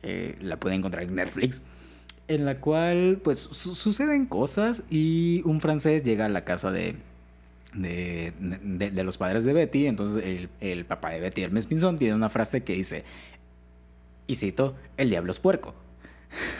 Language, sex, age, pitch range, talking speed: Spanish, male, 20-39, 95-145 Hz, 170 wpm